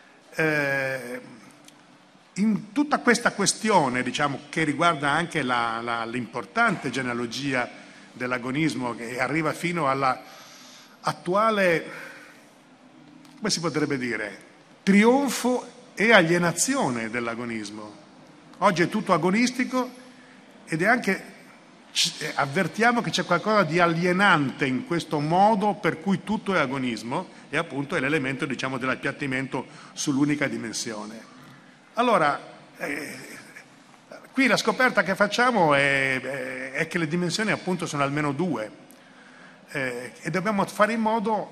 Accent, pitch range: native, 140-215 Hz